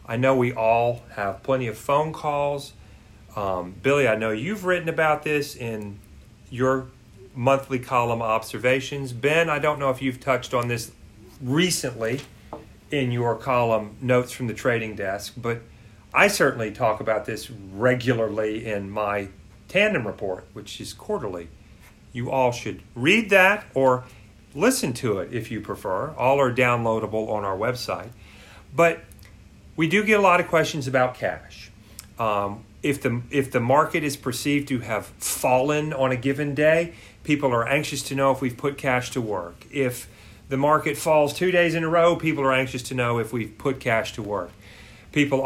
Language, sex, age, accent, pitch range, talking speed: English, male, 40-59, American, 110-145 Hz, 170 wpm